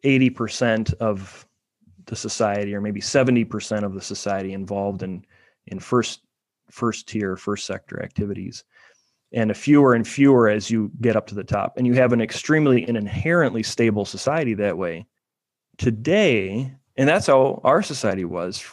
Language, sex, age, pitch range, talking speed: English, male, 30-49, 105-120 Hz, 155 wpm